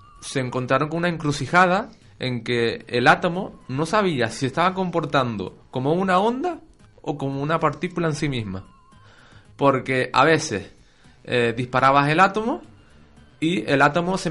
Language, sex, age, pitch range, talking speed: Spanish, male, 20-39, 115-160 Hz, 145 wpm